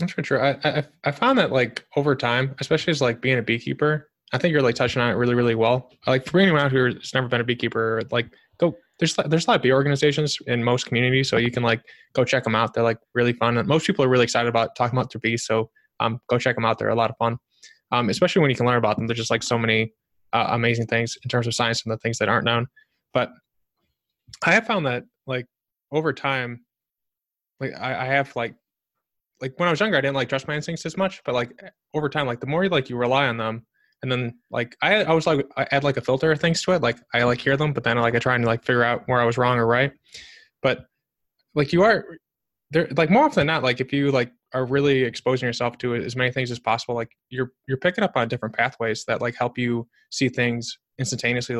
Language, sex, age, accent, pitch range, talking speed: English, male, 20-39, American, 120-140 Hz, 255 wpm